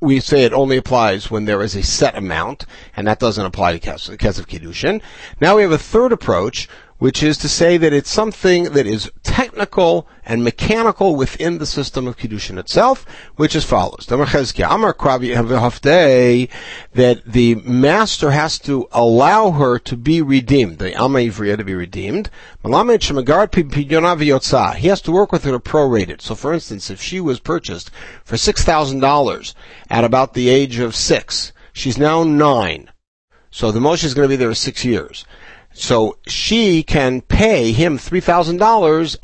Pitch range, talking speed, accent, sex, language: 120-155 Hz, 165 wpm, American, male, English